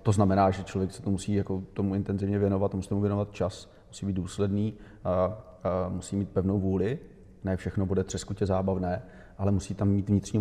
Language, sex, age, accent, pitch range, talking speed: Czech, male, 30-49, native, 100-105 Hz, 200 wpm